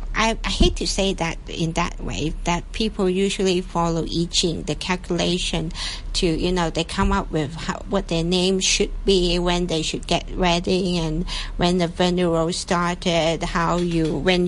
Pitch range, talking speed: 165-195 Hz, 180 wpm